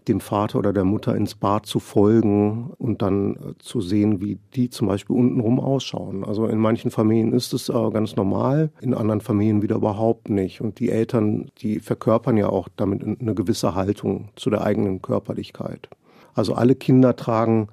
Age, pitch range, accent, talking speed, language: 50-69, 100-120 Hz, German, 175 wpm, German